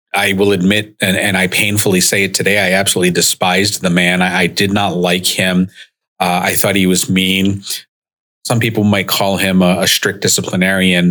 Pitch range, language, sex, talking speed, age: 90-100 Hz, English, male, 195 wpm, 40-59